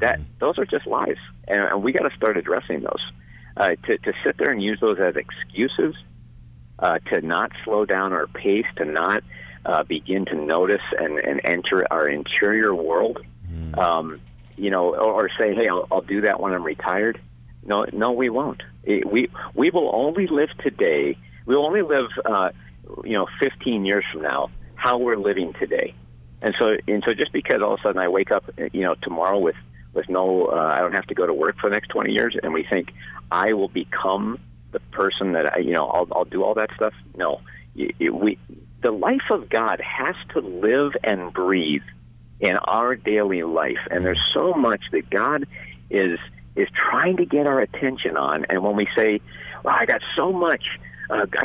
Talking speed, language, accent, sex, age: 200 wpm, English, American, male, 50-69